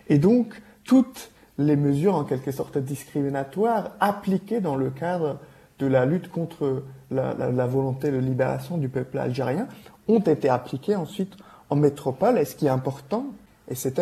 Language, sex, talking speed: French, male, 170 wpm